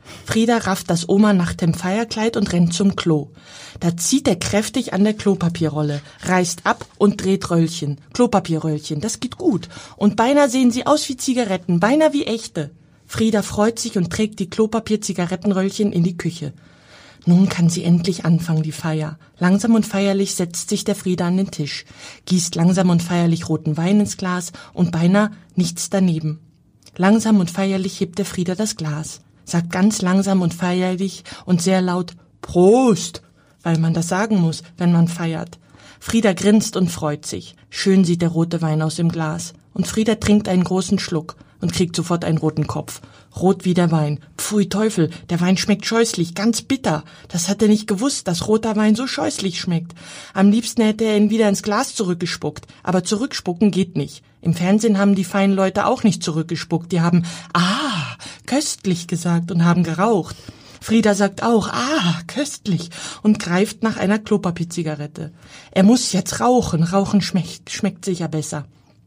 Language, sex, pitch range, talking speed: German, female, 165-210 Hz, 170 wpm